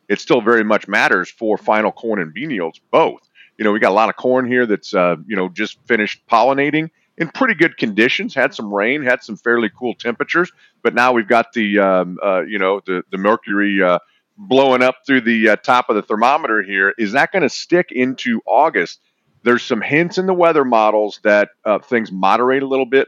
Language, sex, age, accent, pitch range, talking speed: English, male, 40-59, American, 100-125 Hz, 220 wpm